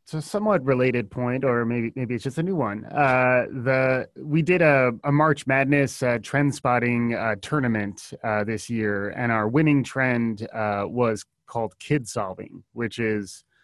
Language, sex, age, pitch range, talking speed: English, male, 20-39, 110-140 Hz, 175 wpm